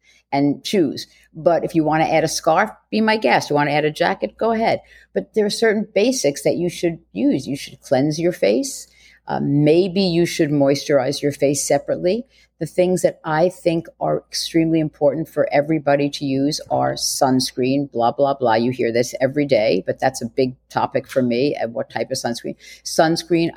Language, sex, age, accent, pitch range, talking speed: English, female, 50-69, American, 140-170 Hz, 195 wpm